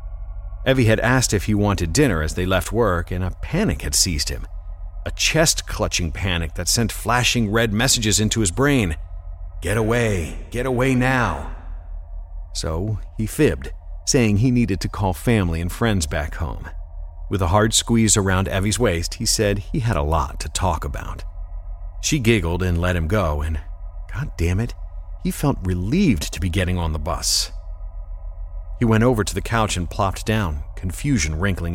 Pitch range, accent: 85-110 Hz, American